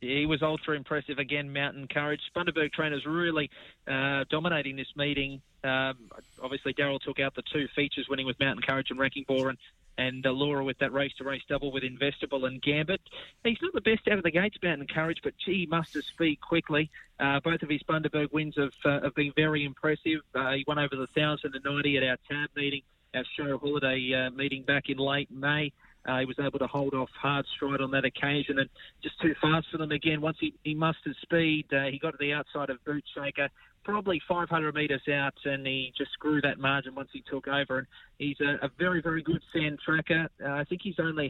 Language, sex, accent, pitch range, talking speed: English, male, Australian, 135-150 Hz, 215 wpm